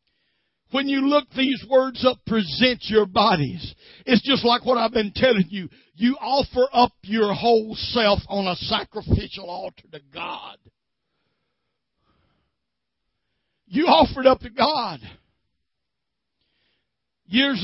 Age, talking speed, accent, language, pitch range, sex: 60-79, 125 wpm, American, English, 155-220 Hz, male